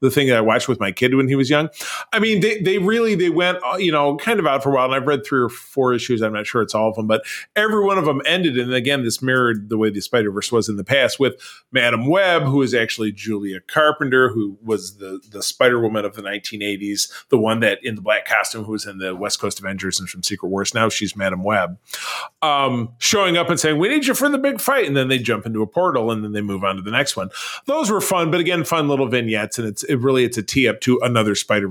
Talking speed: 275 wpm